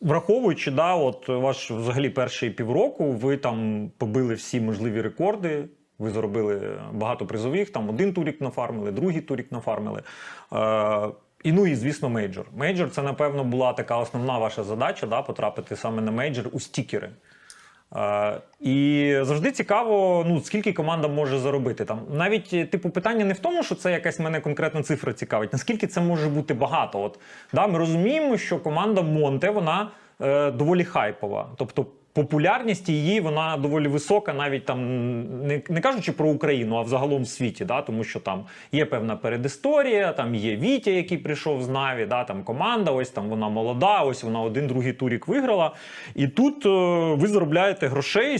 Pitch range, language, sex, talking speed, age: 120-170 Hz, Ukrainian, male, 160 wpm, 30-49